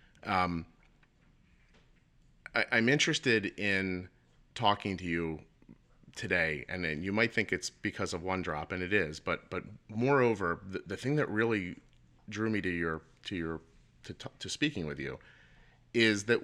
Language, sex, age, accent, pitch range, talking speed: English, male, 30-49, American, 80-110 Hz, 155 wpm